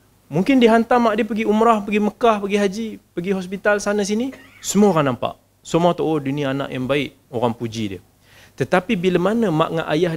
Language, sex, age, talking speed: Malay, male, 30-49, 200 wpm